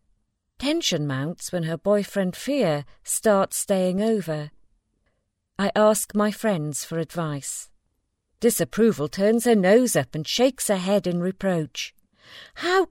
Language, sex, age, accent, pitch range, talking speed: English, female, 40-59, British, 155-225 Hz, 125 wpm